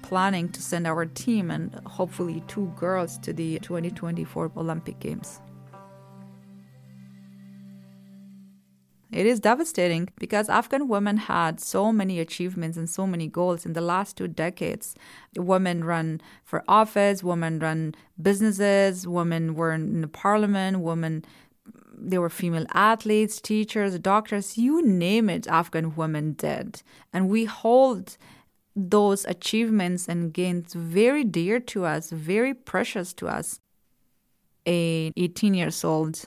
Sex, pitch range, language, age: female, 165-205 Hz, English, 30-49